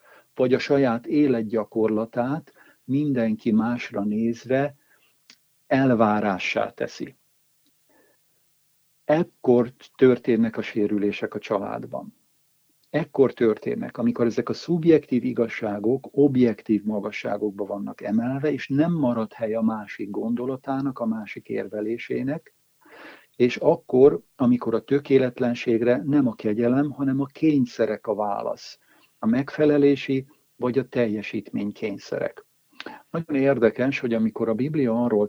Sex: male